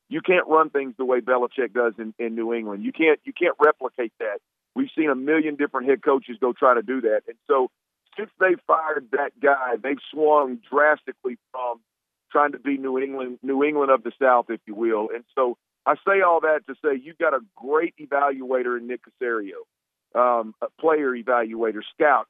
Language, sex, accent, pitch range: English, male, American, 125-150 Hz